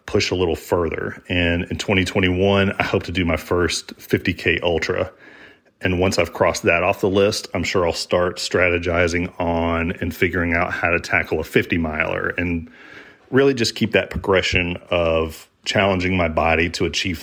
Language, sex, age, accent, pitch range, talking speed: English, male, 40-59, American, 85-100 Hz, 175 wpm